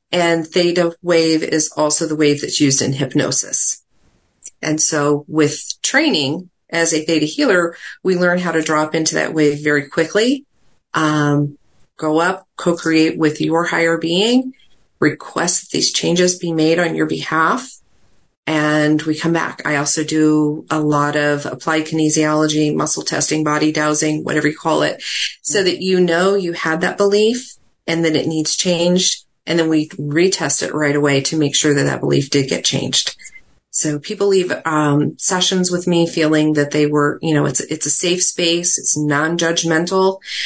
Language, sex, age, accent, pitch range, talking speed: English, female, 40-59, American, 150-175 Hz, 170 wpm